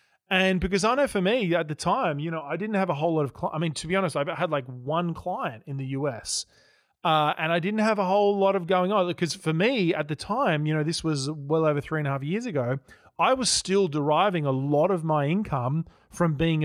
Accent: Australian